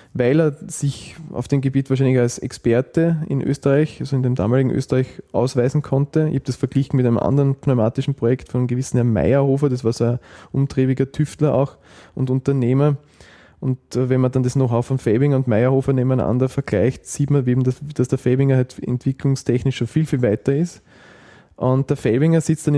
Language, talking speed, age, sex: German, 185 wpm, 20-39, male